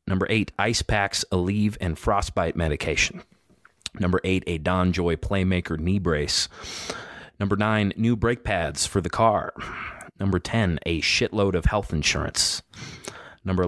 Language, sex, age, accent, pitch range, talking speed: English, male, 30-49, American, 85-105 Hz, 140 wpm